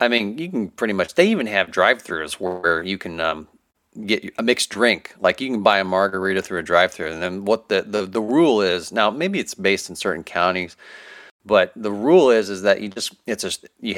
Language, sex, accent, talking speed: English, male, American, 230 wpm